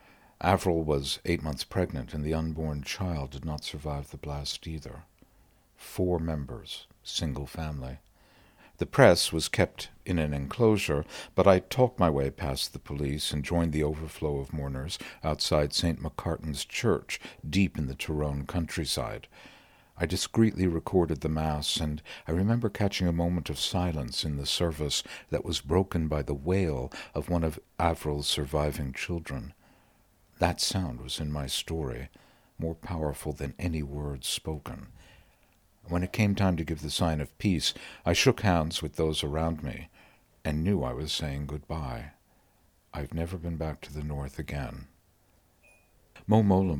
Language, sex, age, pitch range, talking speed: English, male, 60-79, 75-90 Hz, 155 wpm